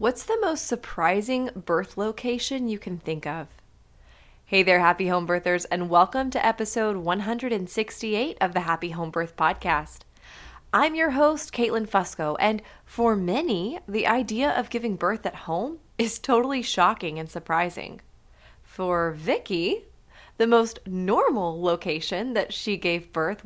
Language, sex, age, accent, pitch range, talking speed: English, female, 20-39, American, 185-245 Hz, 145 wpm